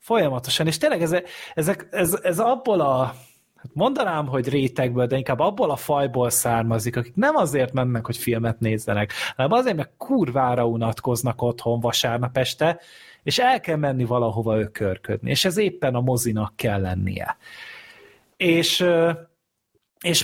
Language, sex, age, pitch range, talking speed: Hungarian, male, 30-49, 120-190 Hz, 140 wpm